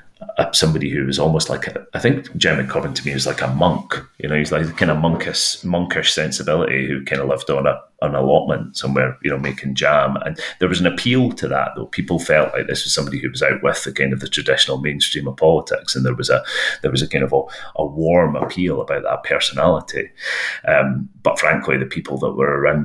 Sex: male